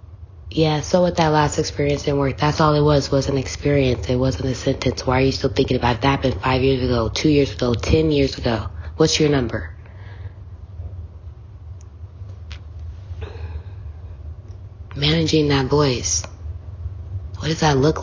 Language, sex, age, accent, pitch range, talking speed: English, female, 20-39, American, 95-145 Hz, 155 wpm